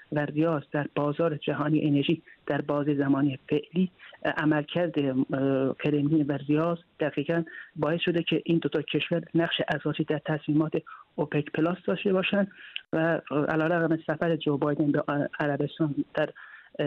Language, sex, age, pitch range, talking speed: Persian, male, 30-49, 150-165 Hz, 130 wpm